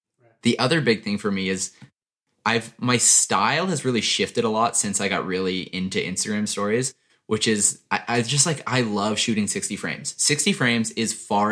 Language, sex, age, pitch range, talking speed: English, male, 20-39, 95-125 Hz, 195 wpm